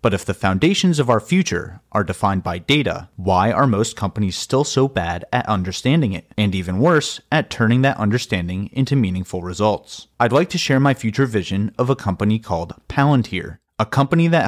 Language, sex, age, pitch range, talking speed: English, male, 30-49, 95-135 Hz, 190 wpm